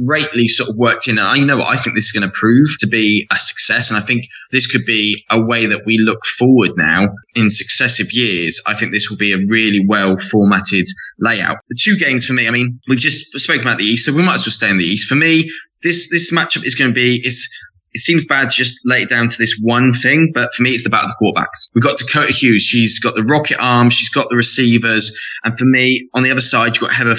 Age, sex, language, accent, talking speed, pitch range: 20-39, male, English, British, 265 wpm, 110-130 Hz